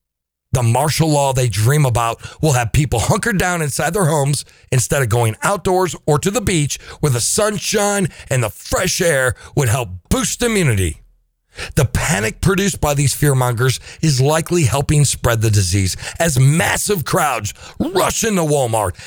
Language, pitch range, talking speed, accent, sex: English, 110-155 Hz, 165 wpm, American, male